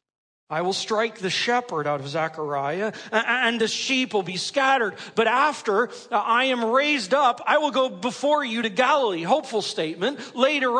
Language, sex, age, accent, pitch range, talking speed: English, male, 40-59, American, 200-295 Hz, 165 wpm